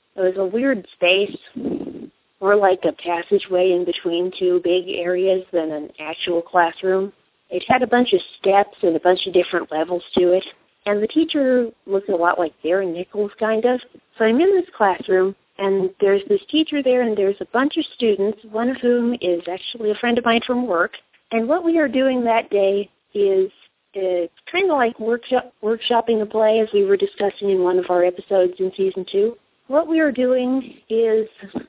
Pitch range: 185-245 Hz